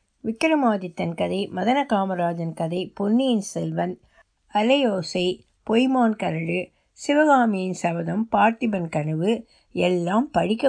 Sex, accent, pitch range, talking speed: female, native, 180-255 Hz, 90 wpm